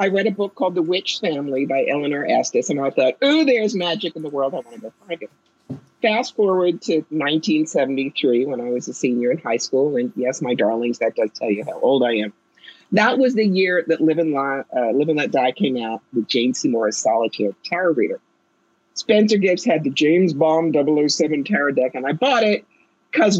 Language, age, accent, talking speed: English, 50-69, American, 215 wpm